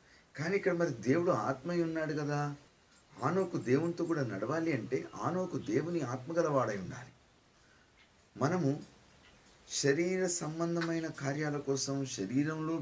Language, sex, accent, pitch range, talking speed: Telugu, male, native, 115-155 Hz, 105 wpm